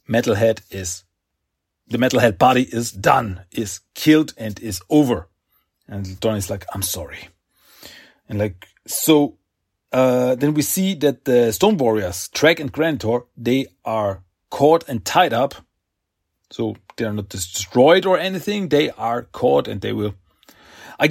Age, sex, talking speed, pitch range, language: 40-59, male, 150 wpm, 95-140 Hz, German